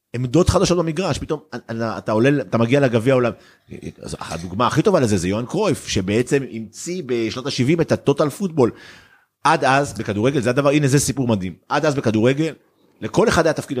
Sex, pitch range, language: male, 100-145 Hz, Hebrew